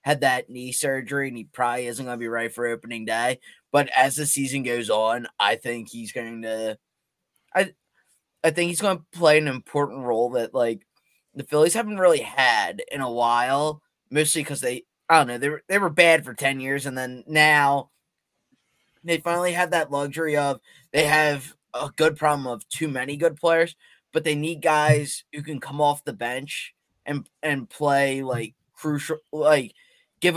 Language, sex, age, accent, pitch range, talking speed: English, male, 20-39, American, 135-160 Hz, 190 wpm